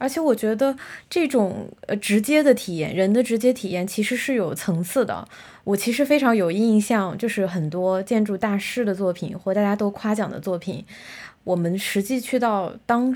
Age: 20-39